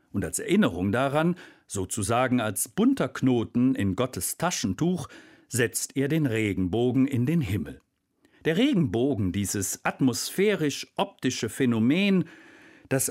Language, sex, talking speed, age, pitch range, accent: German, male, 110 wpm, 50-69, 105-150 Hz, German